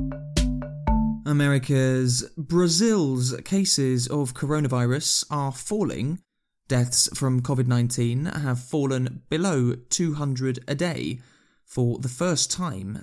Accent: British